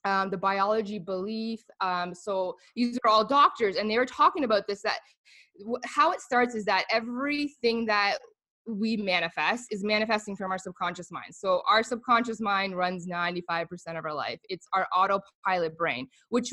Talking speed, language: 165 wpm, English